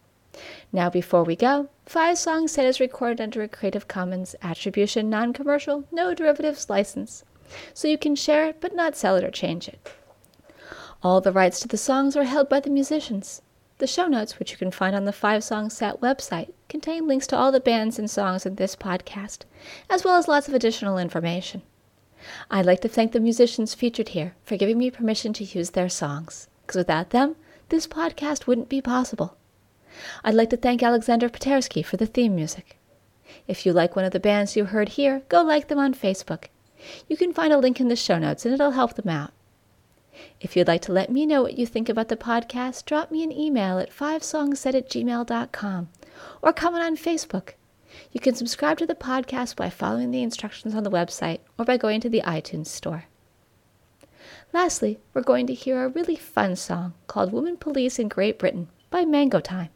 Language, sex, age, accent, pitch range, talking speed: English, female, 30-49, American, 190-285 Hz, 200 wpm